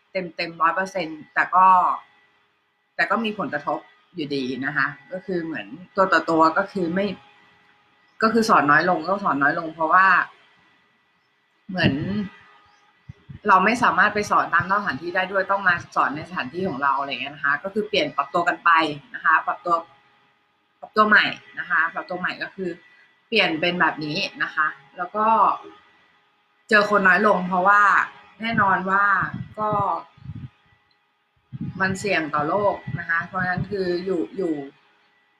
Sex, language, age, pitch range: female, Thai, 20-39, 155-200 Hz